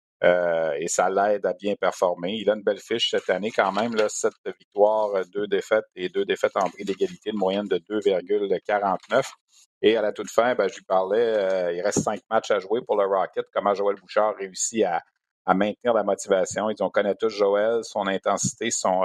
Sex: male